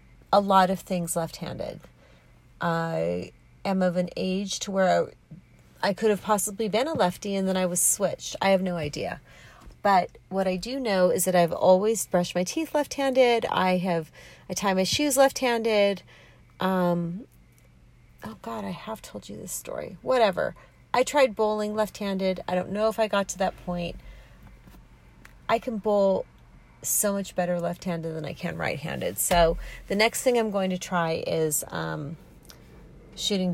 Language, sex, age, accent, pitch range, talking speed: English, female, 40-59, American, 170-220 Hz, 170 wpm